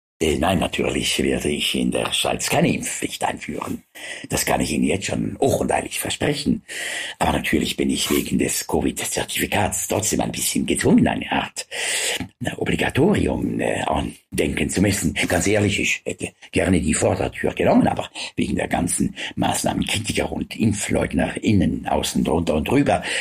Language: German